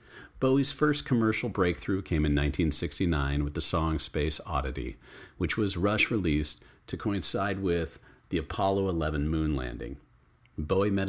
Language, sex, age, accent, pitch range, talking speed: English, male, 40-59, American, 75-95 Hz, 140 wpm